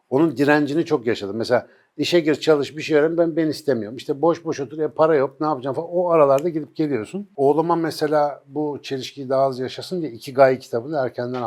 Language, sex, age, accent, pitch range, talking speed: Turkish, male, 60-79, native, 120-155 Hz, 210 wpm